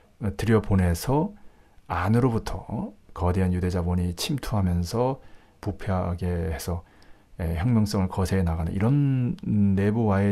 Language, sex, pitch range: Korean, male, 90-115 Hz